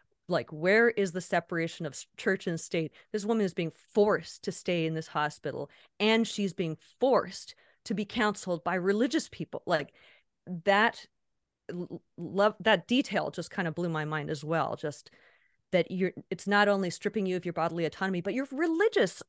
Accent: American